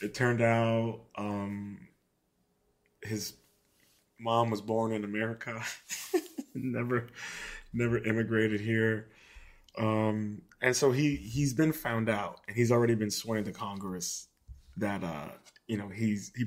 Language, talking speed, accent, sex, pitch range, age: English, 130 wpm, American, male, 105-115 Hz, 20-39